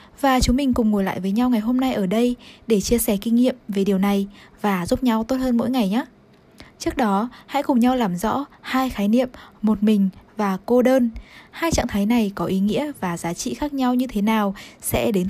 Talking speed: 240 wpm